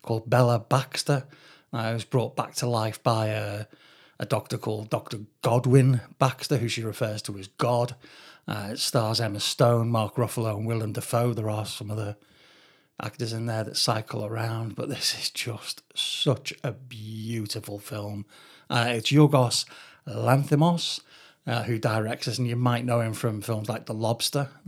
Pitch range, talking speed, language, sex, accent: 115-135 Hz, 170 wpm, English, male, British